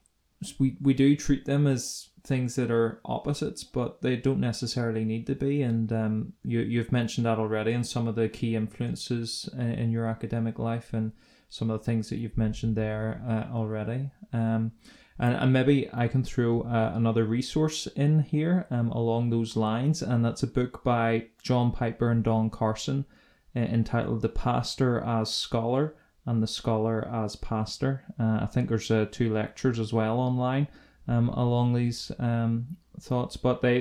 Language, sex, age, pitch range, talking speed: English, male, 20-39, 110-125 Hz, 175 wpm